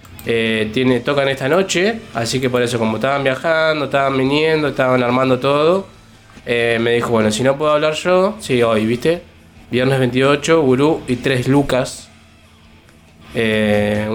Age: 20-39